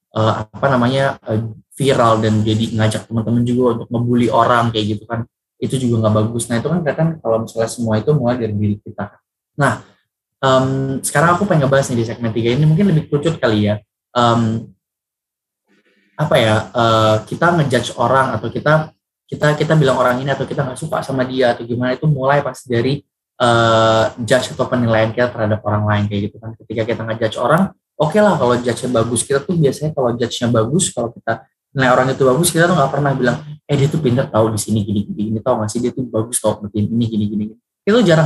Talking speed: 215 wpm